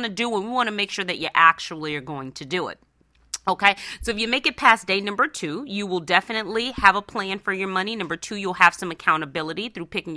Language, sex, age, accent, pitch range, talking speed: English, female, 30-49, American, 175-220 Hz, 260 wpm